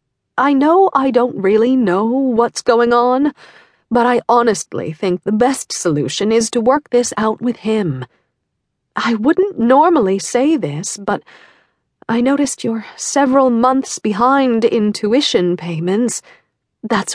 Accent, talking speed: American, 135 wpm